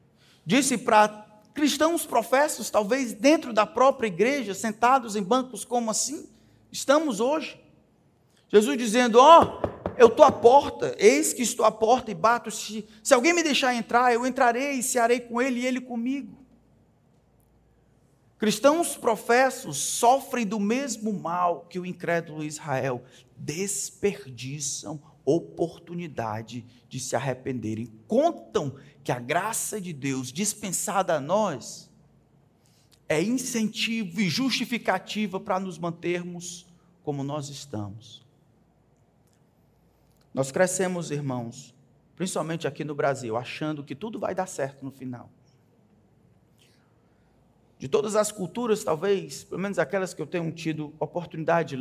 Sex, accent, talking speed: male, Brazilian, 125 wpm